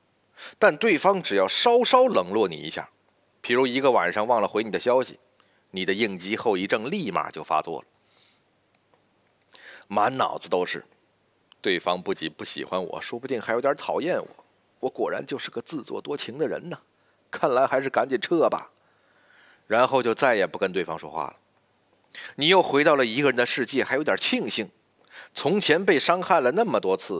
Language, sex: Chinese, male